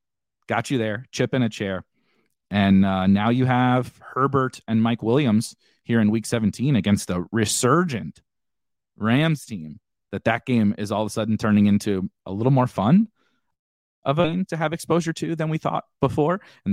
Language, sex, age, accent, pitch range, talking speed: English, male, 30-49, American, 100-130 Hz, 180 wpm